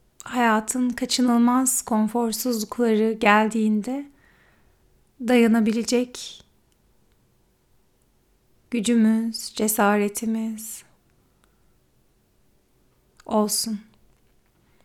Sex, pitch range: female, 220-260 Hz